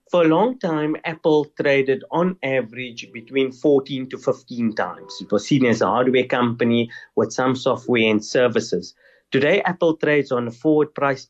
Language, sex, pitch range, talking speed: English, male, 110-150 Hz, 170 wpm